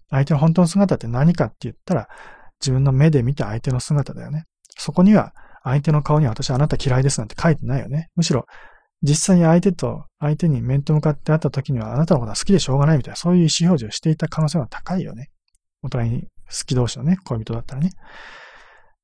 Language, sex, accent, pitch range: Japanese, male, native, 125-165 Hz